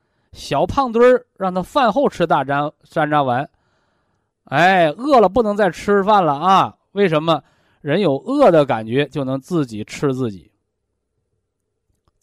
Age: 20-39